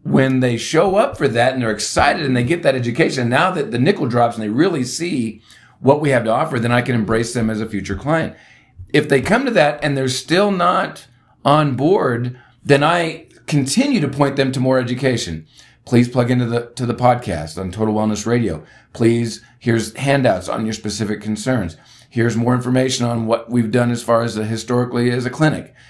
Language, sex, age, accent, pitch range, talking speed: English, male, 40-59, American, 115-140 Hz, 205 wpm